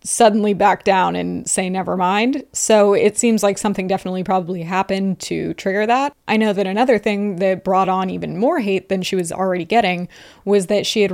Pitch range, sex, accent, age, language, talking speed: 190-225 Hz, female, American, 20-39, English, 205 wpm